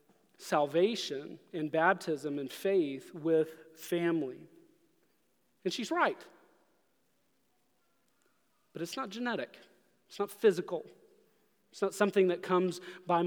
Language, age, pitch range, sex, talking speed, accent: English, 30-49, 165-225 Hz, male, 105 wpm, American